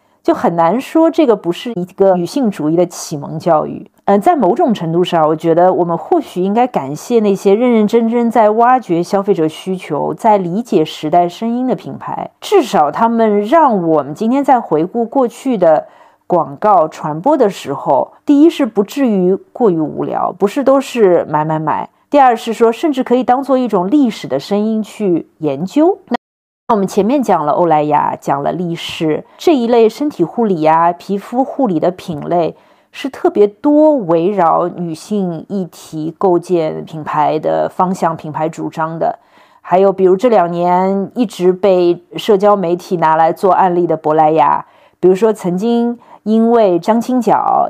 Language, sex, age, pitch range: Chinese, female, 50-69, 170-240 Hz